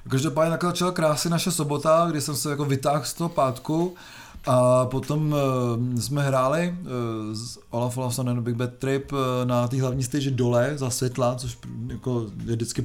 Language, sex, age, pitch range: Czech, male, 30-49, 130-165 Hz